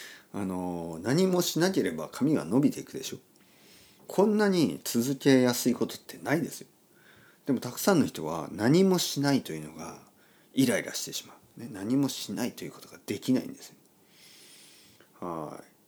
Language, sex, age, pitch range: Japanese, male, 40-59, 115-195 Hz